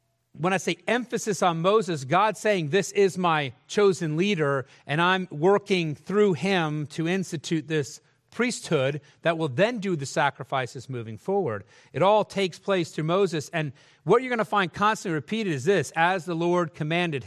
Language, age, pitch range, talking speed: English, 40-59, 155-195 Hz, 175 wpm